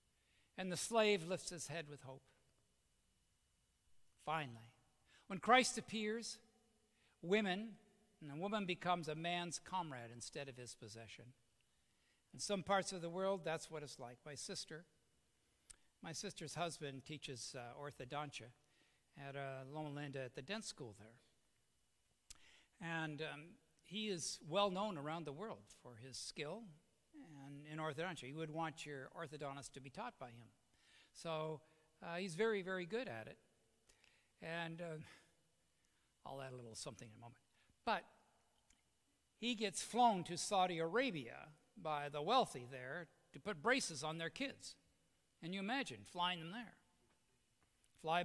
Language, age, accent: English, 60-79, American